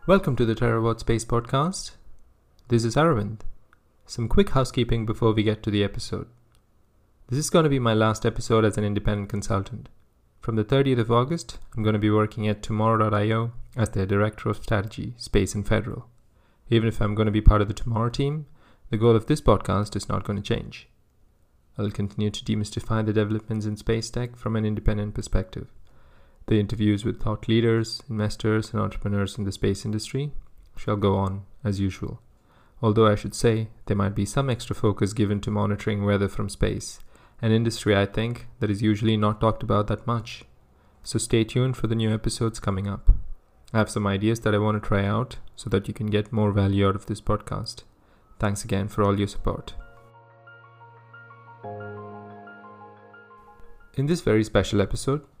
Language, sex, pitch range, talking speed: English, male, 105-115 Hz, 185 wpm